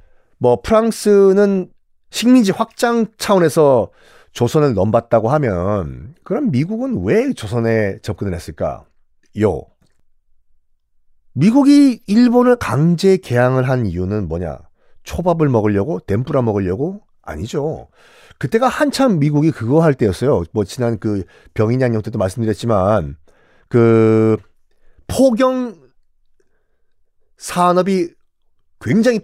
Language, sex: Korean, male